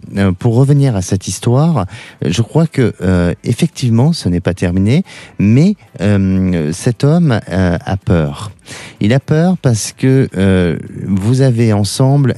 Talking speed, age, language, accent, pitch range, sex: 145 wpm, 40-59, French, French, 95-120 Hz, male